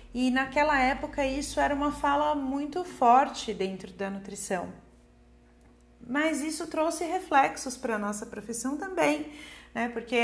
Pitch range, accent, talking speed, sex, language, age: 215-290 Hz, Brazilian, 135 wpm, female, Portuguese, 40-59